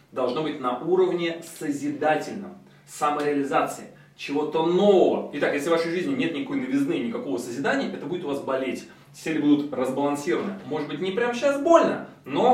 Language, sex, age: Russian, male, 20-39